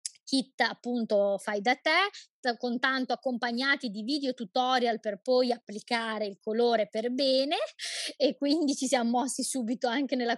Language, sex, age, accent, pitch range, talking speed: Italian, female, 20-39, native, 225-270 Hz, 150 wpm